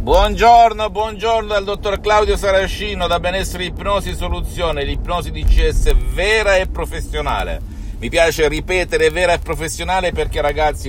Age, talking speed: 50-69, 125 wpm